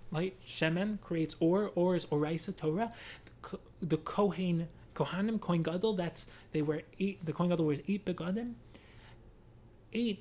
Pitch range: 155-205 Hz